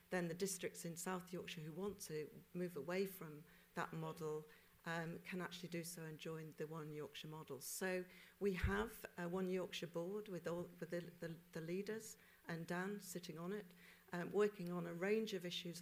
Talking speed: 190 wpm